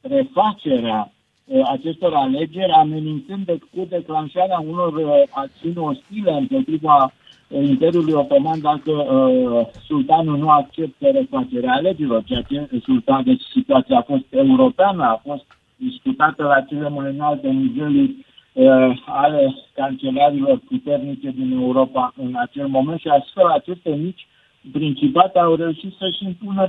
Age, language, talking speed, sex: 60-79, Romanian, 120 wpm, male